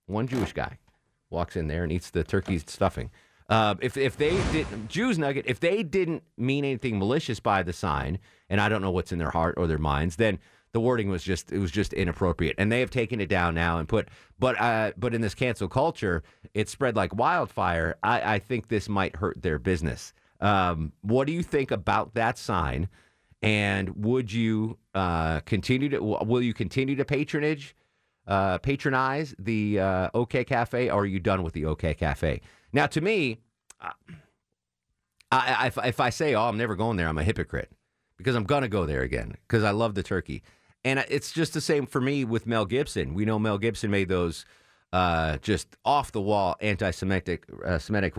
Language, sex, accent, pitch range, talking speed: English, male, American, 90-125 Hz, 195 wpm